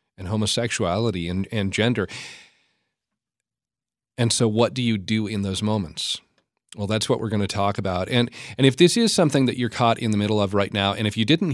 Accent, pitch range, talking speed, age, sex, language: American, 95-115 Hz, 215 wpm, 40-59, male, English